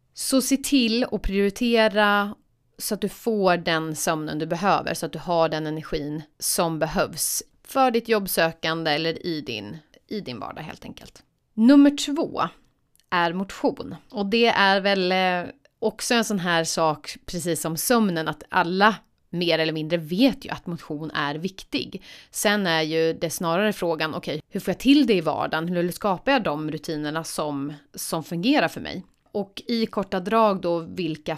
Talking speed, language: 170 wpm, Swedish